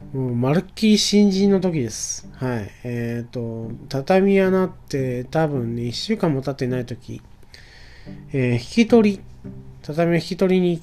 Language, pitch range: Japanese, 120-185 Hz